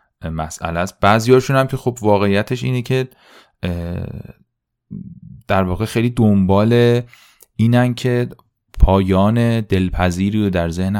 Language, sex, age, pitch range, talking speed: Persian, male, 30-49, 85-105 Hz, 110 wpm